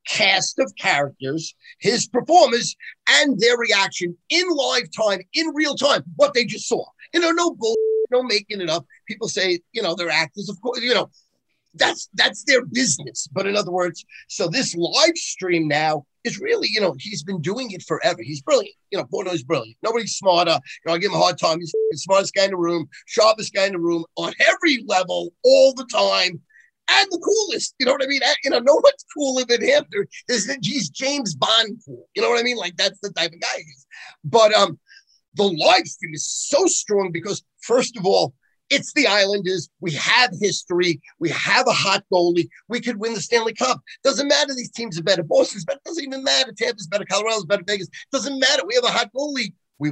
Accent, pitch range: American, 175-275 Hz